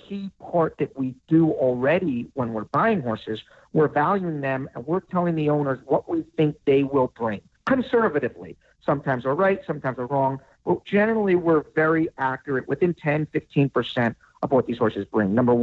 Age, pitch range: 50-69, 135-175 Hz